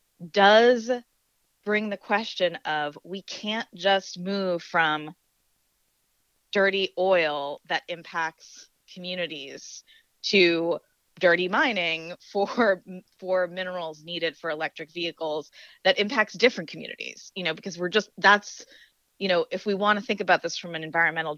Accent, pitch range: American, 165-210 Hz